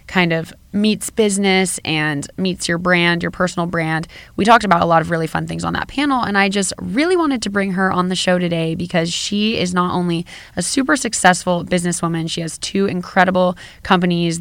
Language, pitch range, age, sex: English, 160-190 Hz, 20-39, female